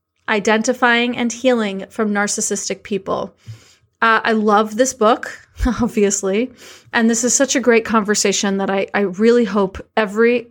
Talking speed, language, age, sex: 145 wpm, English, 30-49, female